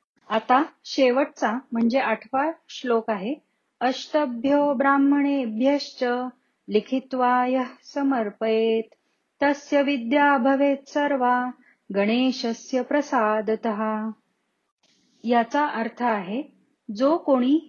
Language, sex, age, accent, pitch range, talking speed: Marathi, female, 40-59, native, 220-275 Hz, 70 wpm